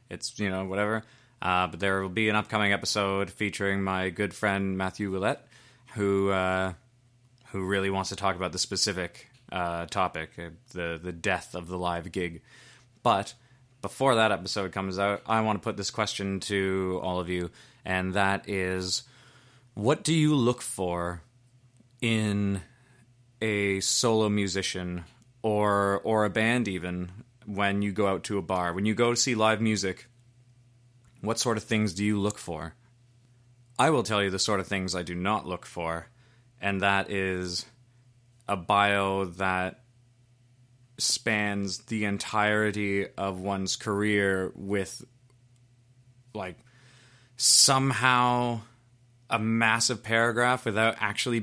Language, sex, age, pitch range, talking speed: English, male, 20-39, 95-120 Hz, 145 wpm